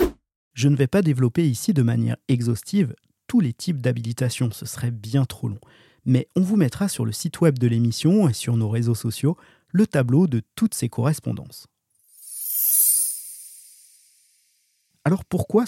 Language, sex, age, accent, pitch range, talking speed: French, male, 40-59, French, 120-160 Hz, 155 wpm